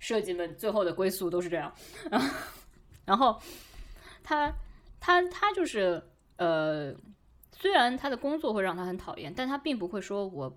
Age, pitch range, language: 20-39, 180-280 Hz, Chinese